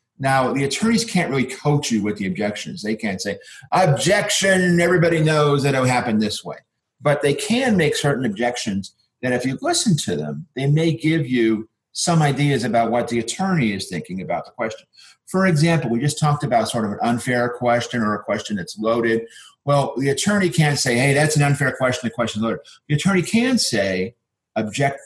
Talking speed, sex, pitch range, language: 195 wpm, male, 115-160 Hz, English